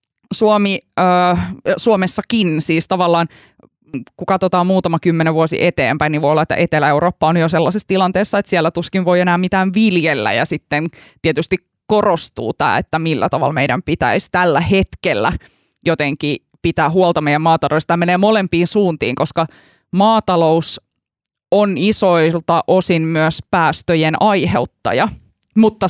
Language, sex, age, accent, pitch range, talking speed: Finnish, female, 20-39, native, 160-195 Hz, 130 wpm